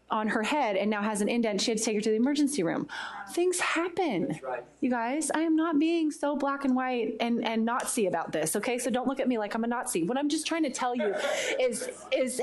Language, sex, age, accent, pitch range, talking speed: English, female, 20-39, American, 205-260 Hz, 255 wpm